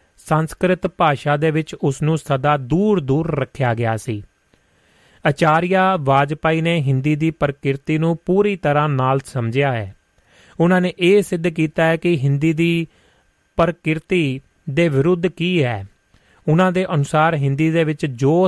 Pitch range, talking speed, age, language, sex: 140-175 Hz, 145 wpm, 30-49, Punjabi, male